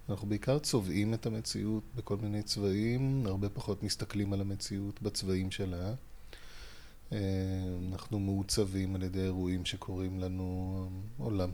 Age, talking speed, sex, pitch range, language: 20-39, 120 wpm, male, 95-125 Hz, Hebrew